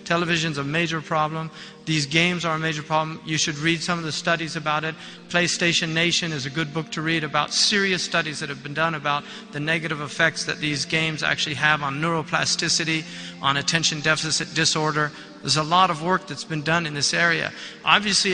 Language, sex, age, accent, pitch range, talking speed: English, male, 50-69, American, 160-195 Hz, 200 wpm